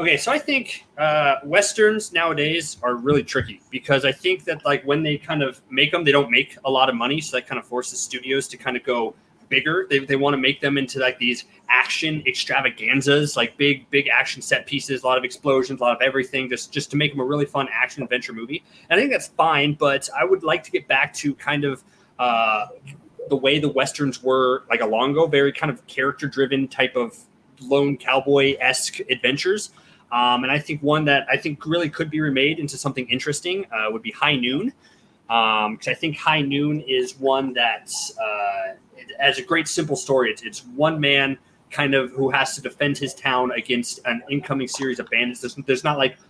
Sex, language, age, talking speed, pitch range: male, English, 20-39, 215 wpm, 125-145 Hz